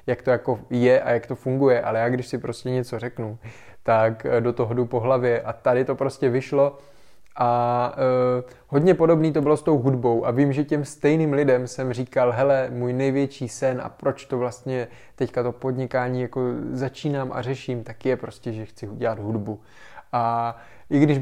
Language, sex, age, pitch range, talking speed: Czech, male, 20-39, 120-130 Hz, 185 wpm